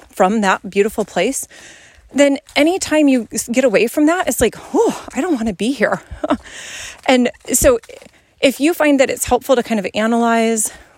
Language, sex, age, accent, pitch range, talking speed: English, female, 30-49, American, 200-275 Hz, 175 wpm